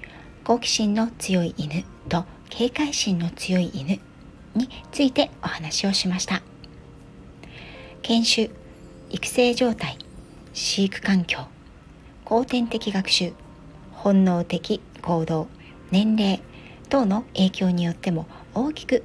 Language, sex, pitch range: Japanese, female, 170-240 Hz